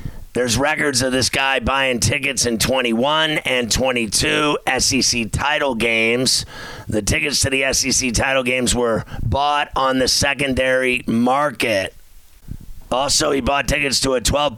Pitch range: 120-140 Hz